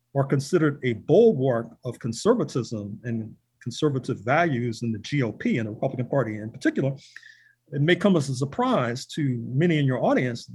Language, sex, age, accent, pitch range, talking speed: English, male, 40-59, American, 130-170 Hz, 165 wpm